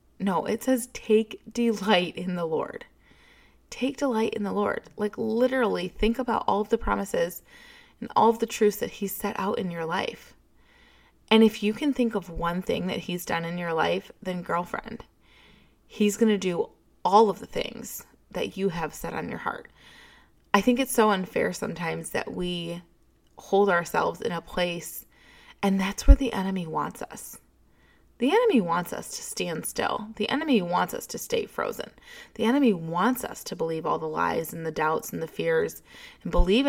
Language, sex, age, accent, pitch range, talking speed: English, female, 20-39, American, 170-230 Hz, 190 wpm